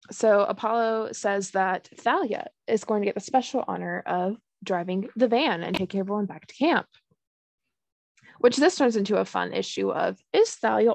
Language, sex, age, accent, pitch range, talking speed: English, female, 20-39, American, 195-275 Hz, 175 wpm